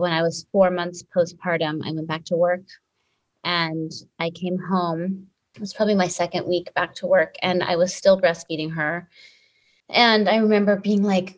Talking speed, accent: 185 wpm, American